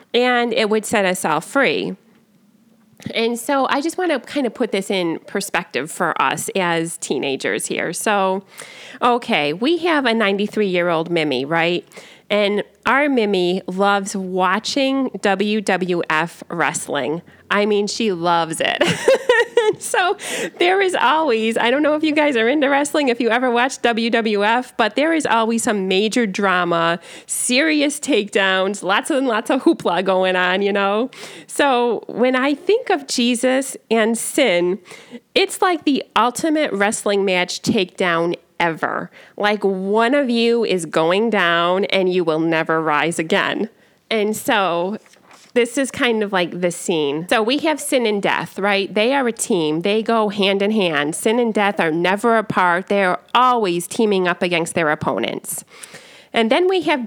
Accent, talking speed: American, 160 wpm